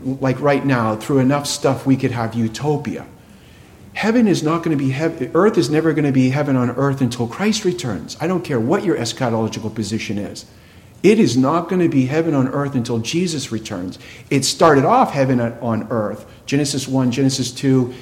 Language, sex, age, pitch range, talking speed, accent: English, male, 50-69, 115-165 Hz, 195 wpm, American